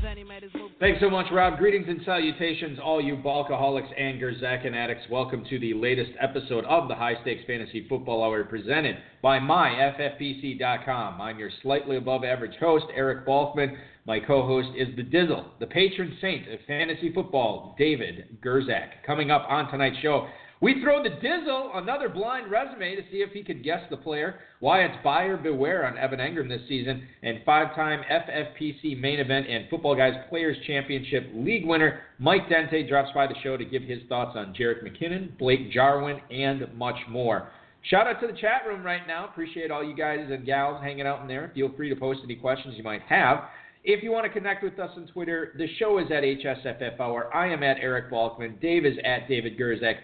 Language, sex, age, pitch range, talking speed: English, male, 40-59, 125-155 Hz, 195 wpm